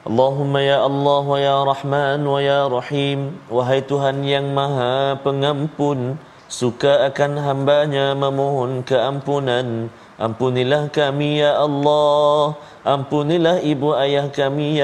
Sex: male